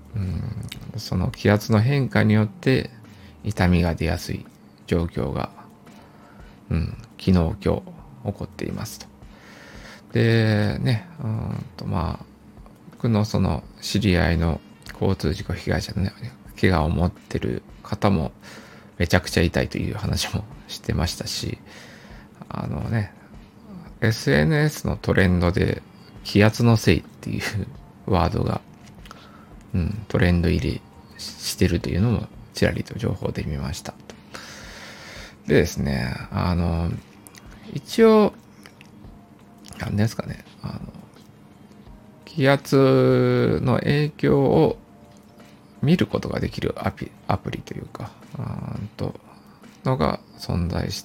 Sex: male